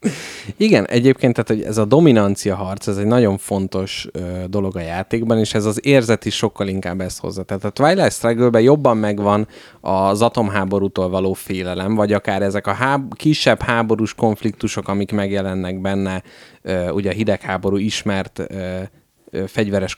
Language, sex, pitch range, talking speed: Hungarian, male, 95-115 Hz, 160 wpm